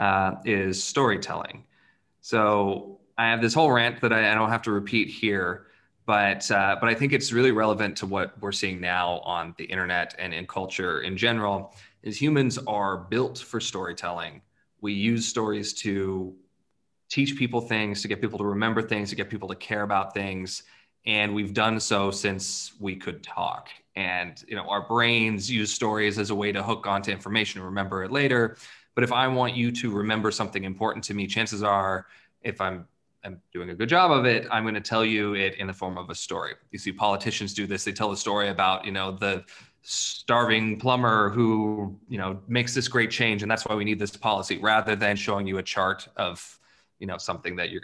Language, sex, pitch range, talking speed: English, male, 100-115 Hz, 205 wpm